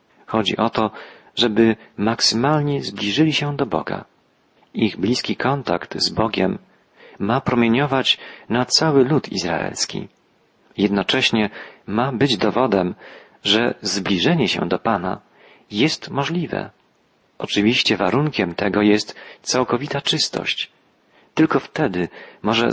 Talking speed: 105 wpm